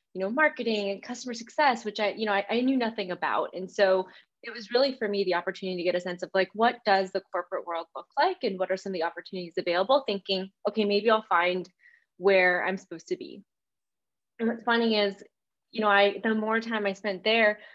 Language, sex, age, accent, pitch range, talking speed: English, female, 20-39, American, 190-225 Hz, 230 wpm